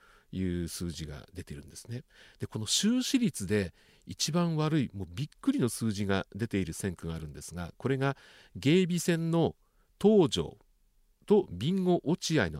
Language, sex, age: Japanese, male, 40-59